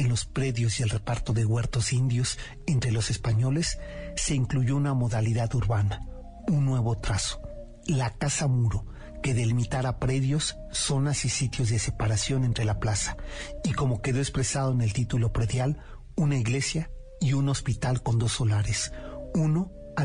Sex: male